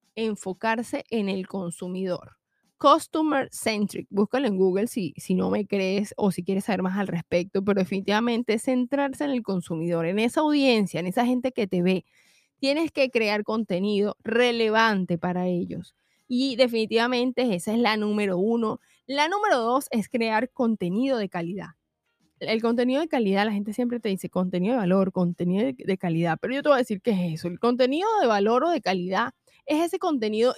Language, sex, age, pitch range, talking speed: Spanish, female, 20-39, 190-260 Hz, 185 wpm